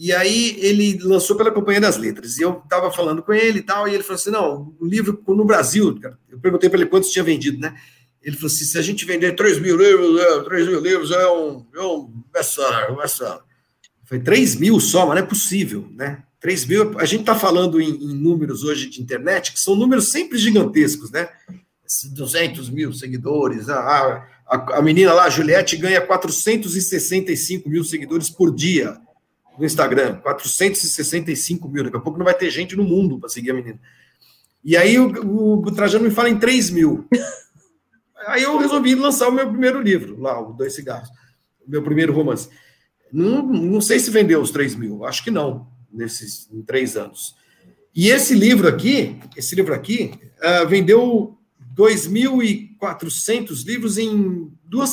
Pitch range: 150-220 Hz